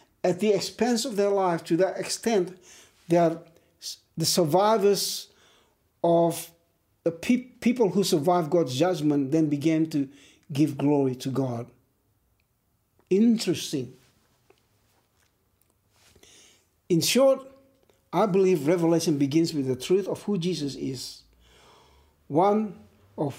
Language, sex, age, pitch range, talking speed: English, male, 60-79, 135-200 Hz, 110 wpm